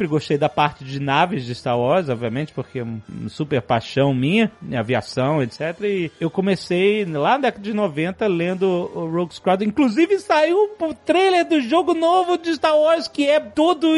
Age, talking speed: 30-49, 180 wpm